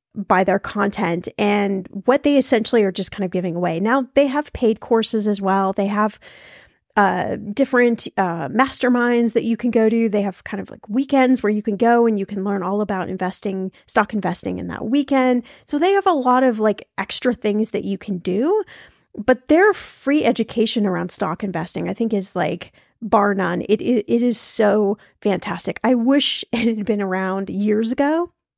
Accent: American